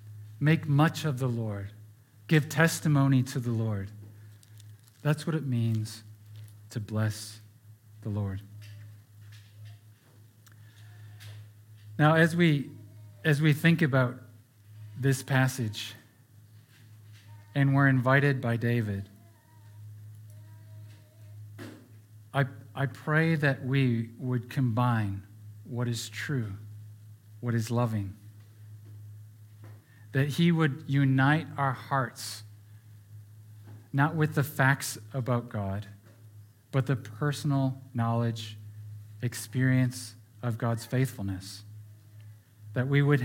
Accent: American